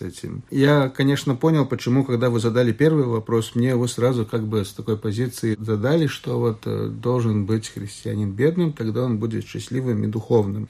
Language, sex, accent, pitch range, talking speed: Russian, male, native, 110-140 Hz, 165 wpm